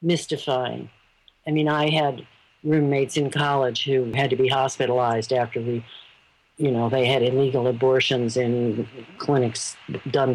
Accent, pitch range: American, 130-170 Hz